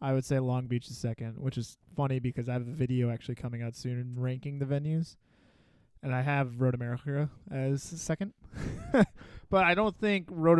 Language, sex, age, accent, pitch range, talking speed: English, male, 20-39, American, 125-140 Hz, 190 wpm